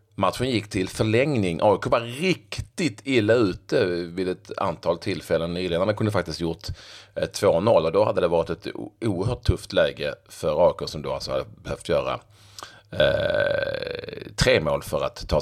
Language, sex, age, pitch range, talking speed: Swedish, male, 30-49, 90-110 Hz, 165 wpm